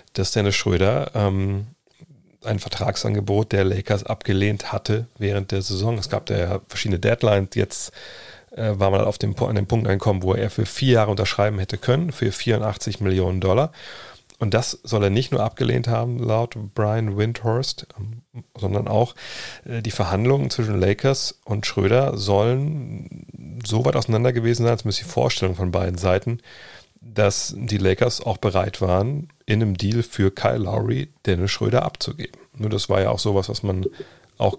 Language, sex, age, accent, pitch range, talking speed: German, male, 40-59, German, 100-120 Hz, 170 wpm